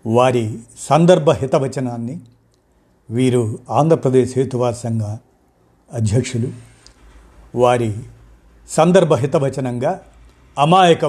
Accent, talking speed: native, 60 wpm